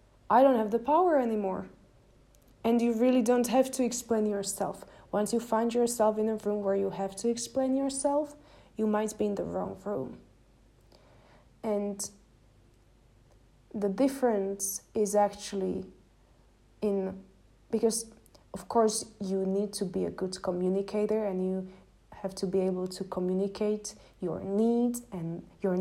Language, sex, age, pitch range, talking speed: English, female, 20-39, 185-225 Hz, 145 wpm